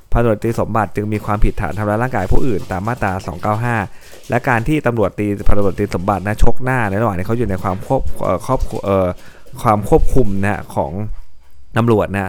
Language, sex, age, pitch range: Thai, male, 20-39, 95-115 Hz